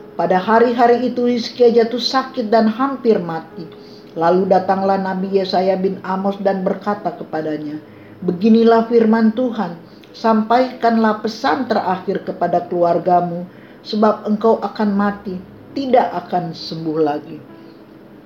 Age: 50-69